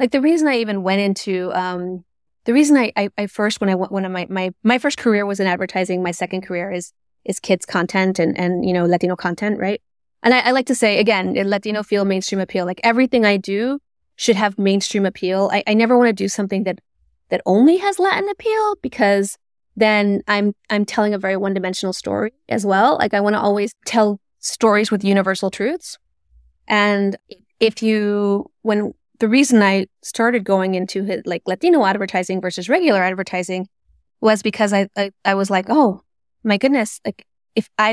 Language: English